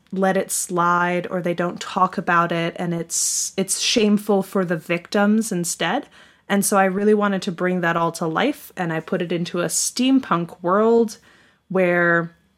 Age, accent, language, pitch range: 20-39, American, English, 175-205 Hz